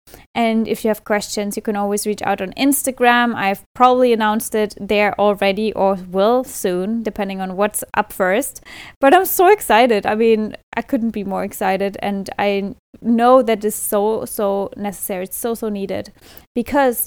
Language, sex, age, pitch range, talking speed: English, female, 10-29, 215-260 Hz, 175 wpm